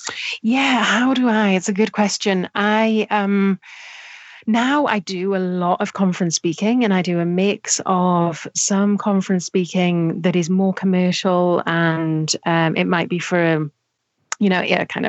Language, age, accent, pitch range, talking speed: English, 30-49, British, 165-195 Hz, 165 wpm